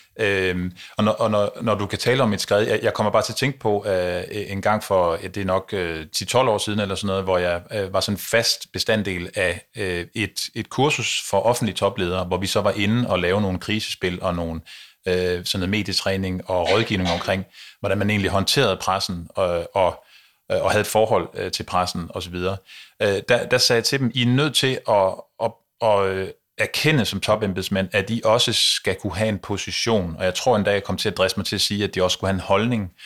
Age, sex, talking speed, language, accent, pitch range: 30-49, male, 240 wpm, Danish, native, 95-110 Hz